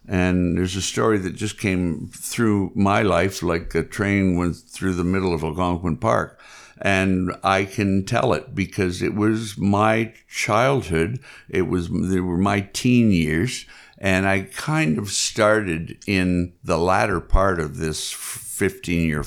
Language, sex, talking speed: English, male, 155 wpm